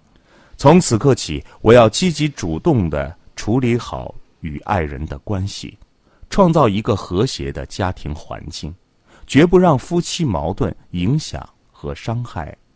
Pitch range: 75-130 Hz